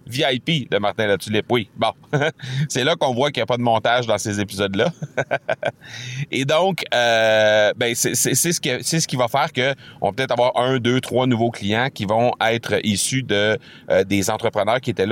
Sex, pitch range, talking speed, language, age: male, 100-135 Hz, 185 wpm, French, 30-49